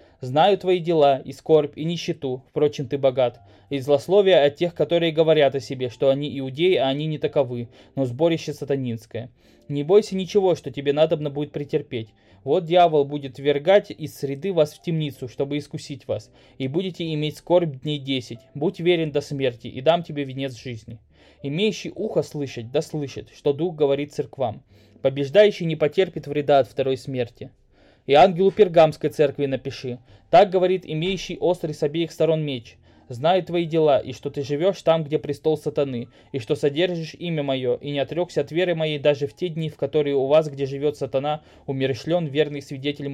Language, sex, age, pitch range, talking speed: Russian, male, 20-39, 135-160 Hz, 180 wpm